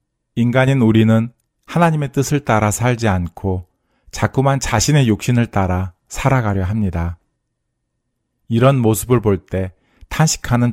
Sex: male